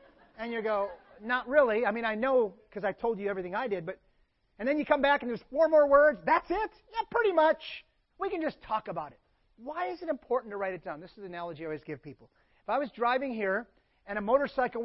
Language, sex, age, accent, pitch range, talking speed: English, male, 30-49, American, 180-250 Hz, 250 wpm